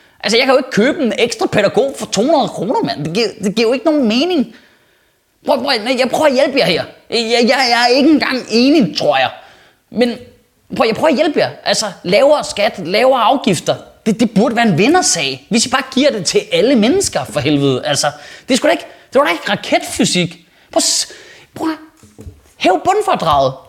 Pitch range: 205-300 Hz